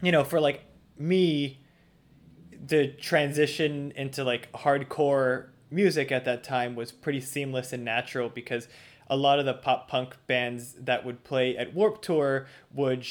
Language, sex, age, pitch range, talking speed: English, male, 20-39, 120-140 Hz, 155 wpm